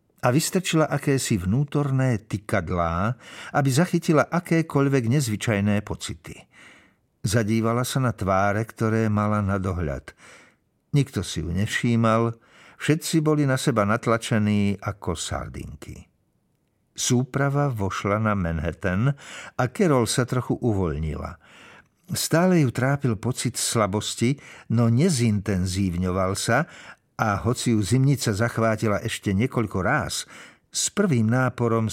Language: Slovak